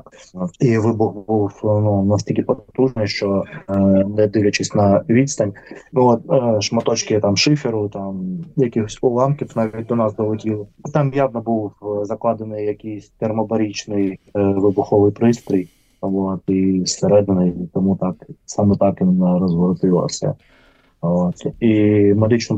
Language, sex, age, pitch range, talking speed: Ukrainian, male, 20-39, 100-115 Hz, 115 wpm